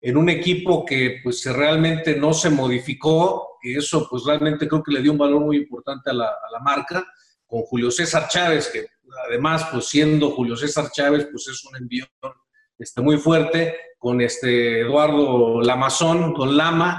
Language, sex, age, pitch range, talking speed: Spanish, male, 40-59, 140-175 Hz, 175 wpm